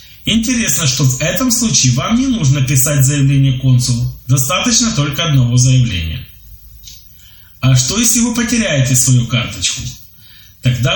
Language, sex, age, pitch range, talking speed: Polish, male, 30-49, 125-150 Hz, 125 wpm